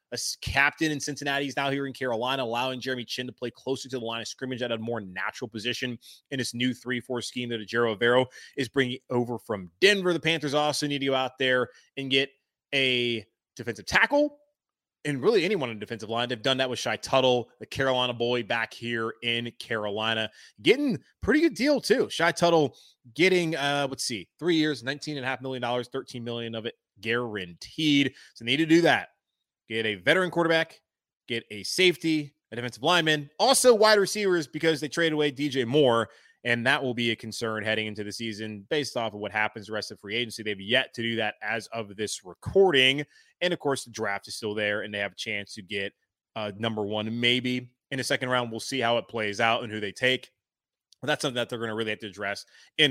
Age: 20-39